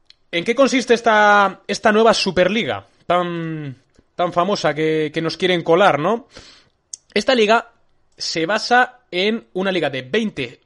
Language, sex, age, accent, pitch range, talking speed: Spanish, male, 20-39, Spanish, 130-205 Hz, 140 wpm